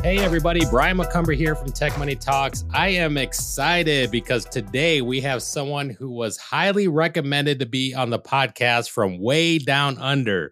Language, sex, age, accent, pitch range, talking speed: English, male, 30-49, American, 115-155 Hz, 170 wpm